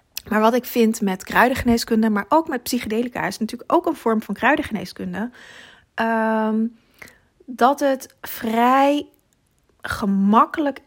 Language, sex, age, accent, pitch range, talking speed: Dutch, female, 30-49, Dutch, 205-255 Hz, 120 wpm